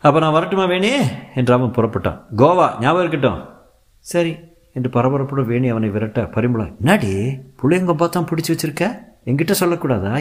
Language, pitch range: Tamil, 105-165 Hz